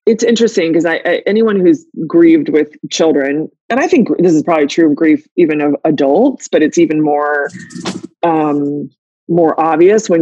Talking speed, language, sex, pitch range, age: 180 wpm, English, female, 155-195 Hz, 20-39